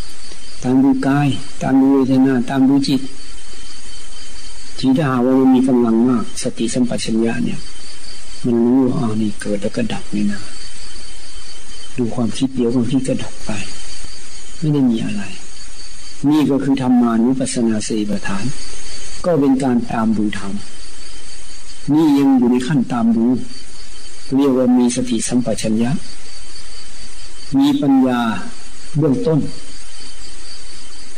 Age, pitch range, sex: 60-79, 115-135 Hz, male